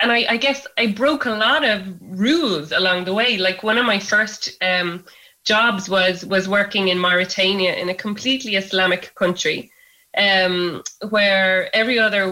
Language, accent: English, Irish